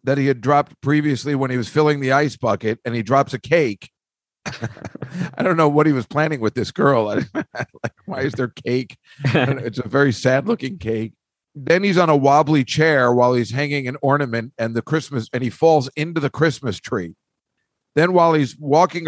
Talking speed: 195 wpm